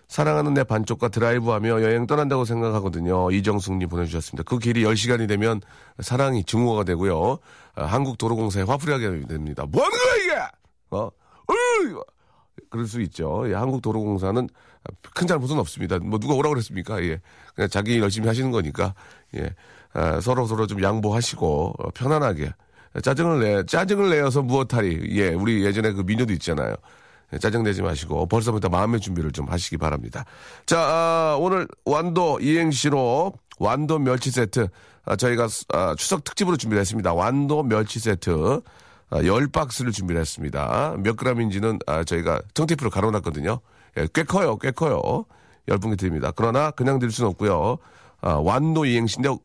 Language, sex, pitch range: Korean, male, 95-130 Hz